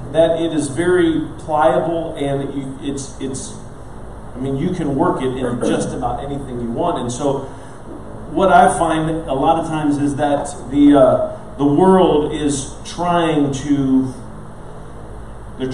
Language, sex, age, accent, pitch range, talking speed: English, male, 40-59, American, 115-155 Hz, 145 wpm